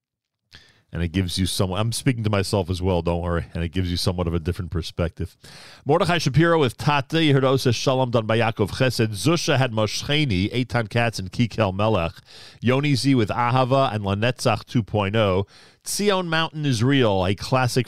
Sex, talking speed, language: male, 175 wpm, English